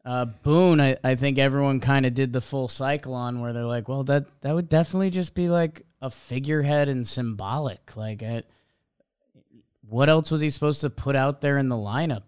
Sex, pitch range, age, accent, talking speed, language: male, 120-145 Hz, 20-39, American, 205 wpm, English